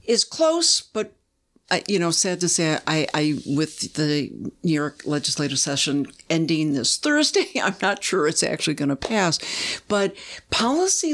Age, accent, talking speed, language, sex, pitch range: 60-79, American, 155 wpm, English, female, 155-205 Hz